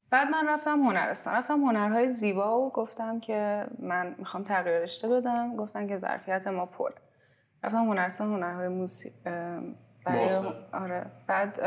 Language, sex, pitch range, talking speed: Persian, female, 185-245 Hz, 135 wpm